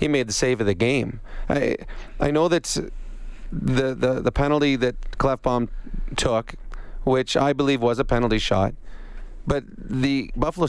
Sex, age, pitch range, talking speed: male, 40-59, 115-140 Hz, 155 wpm